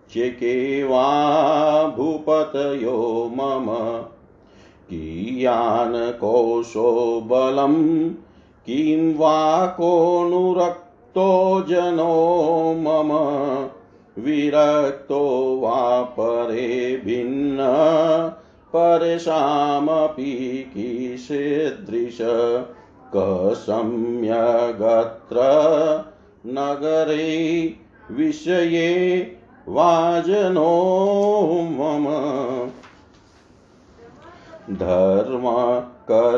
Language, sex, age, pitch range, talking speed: Hindi, male, 50-69, 125-160 Hz, 35 wpm